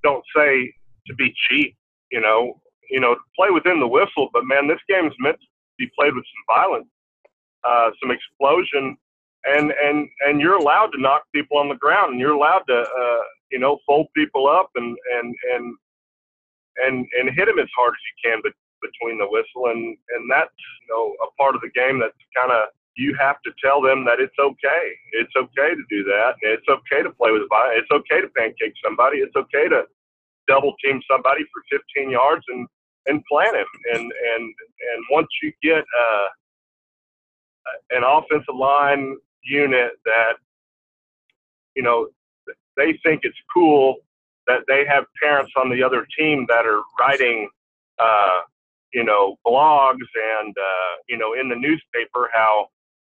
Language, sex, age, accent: English, male, 40-59, American